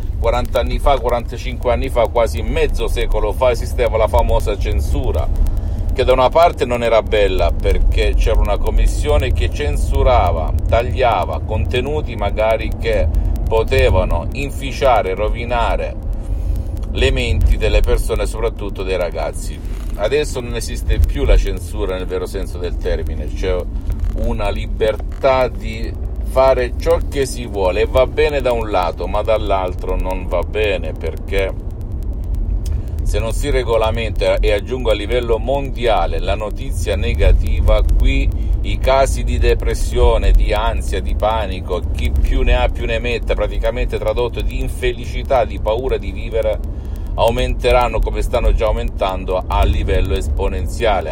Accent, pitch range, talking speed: native, 80-105 Hz, 135 wpm